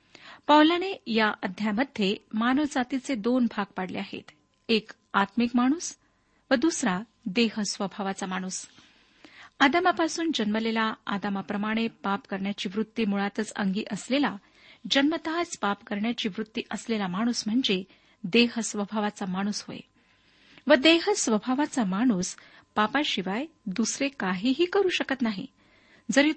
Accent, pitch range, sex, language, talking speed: native, 210-270 Hz, female, Marathi, 100 wpm